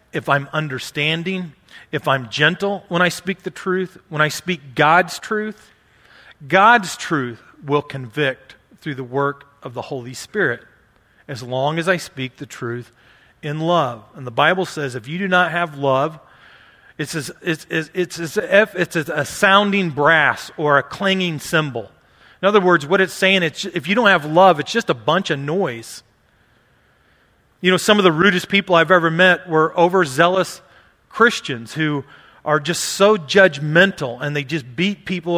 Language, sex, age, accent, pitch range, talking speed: English, male, 40-59, American, 145-185 Hz, 165 wpm